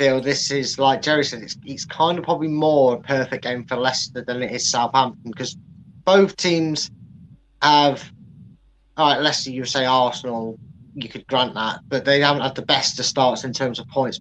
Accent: British